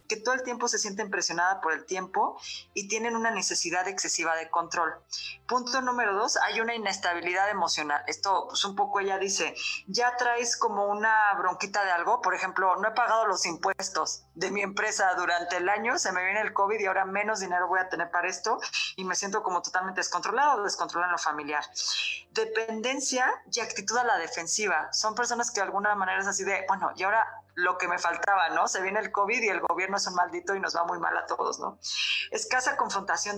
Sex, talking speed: female, 210 wpm